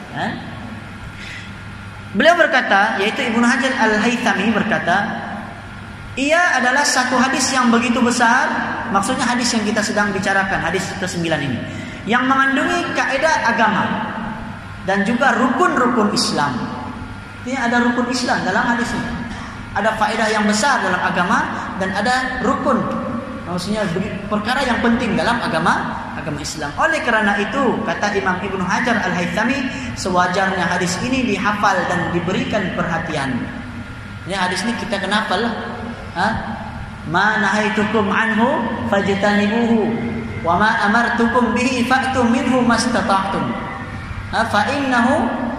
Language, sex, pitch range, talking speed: Malay, male, 195-250 Hz, 115 wpm